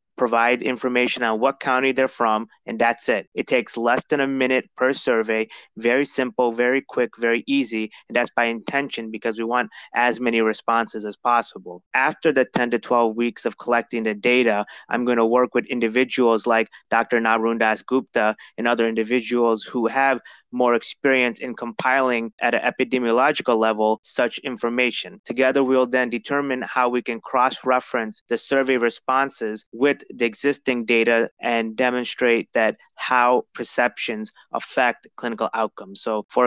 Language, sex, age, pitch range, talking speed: English, male, 20-39, 115-130 Hz, 160 wpm